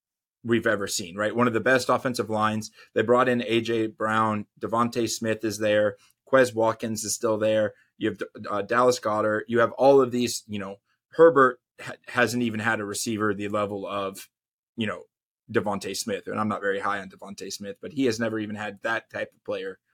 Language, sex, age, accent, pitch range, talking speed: English, male, 20-39, American, 105-125 Hz, 205 wpm